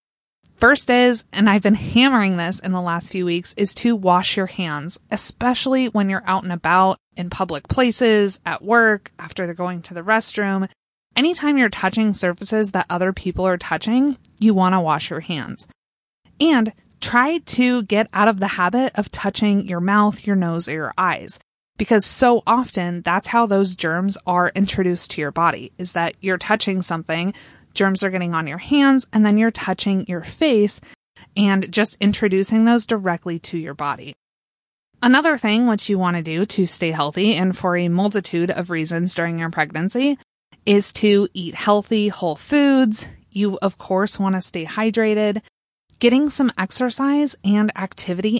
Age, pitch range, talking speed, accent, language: 20-39, 180-220 Hz, 175 wpm, American, English